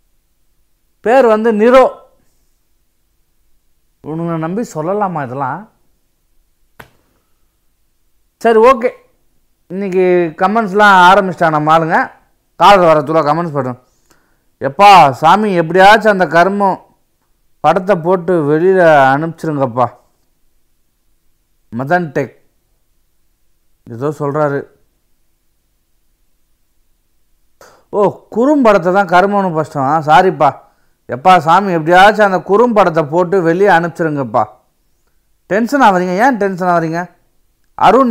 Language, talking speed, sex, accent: Tamil, 80 wpm, male, native